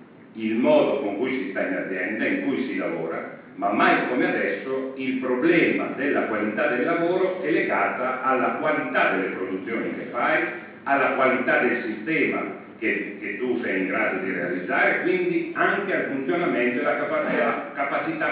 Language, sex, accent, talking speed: Italian, male, native, 160 wpm